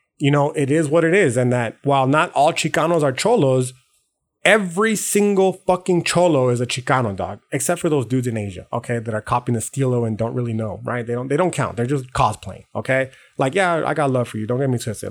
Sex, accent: male, American